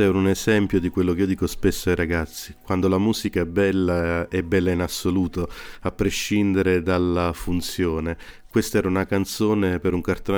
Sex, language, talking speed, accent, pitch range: male, Italian, 175 wpm, native, 85-100 Hz